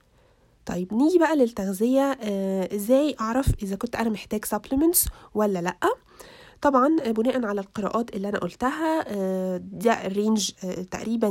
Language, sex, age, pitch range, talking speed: Arabic, female, 20-39, 195-250 Hz, 120 wpm